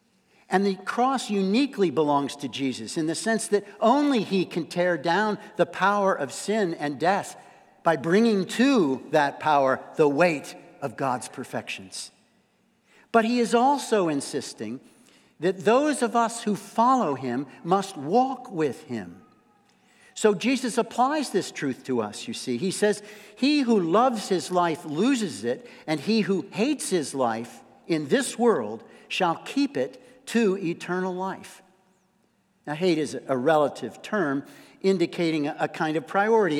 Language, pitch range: English, 160-230 Hz